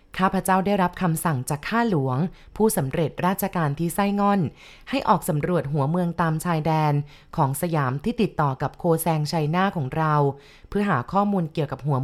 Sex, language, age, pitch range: female, Thai, 20-39, 150-190 Hz